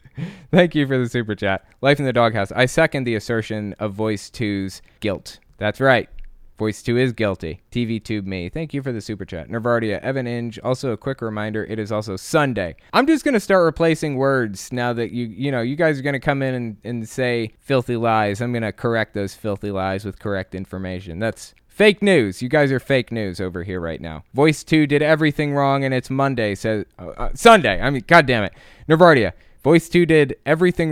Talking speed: 210 wpm